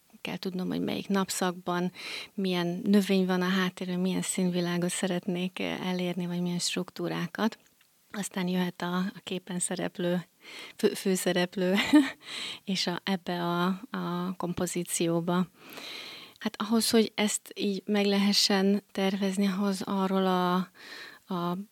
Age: 30-49